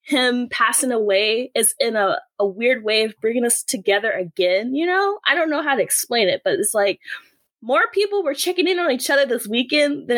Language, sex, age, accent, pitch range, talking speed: English, female, 20-39, American, 220-290 Hz, 220 wpm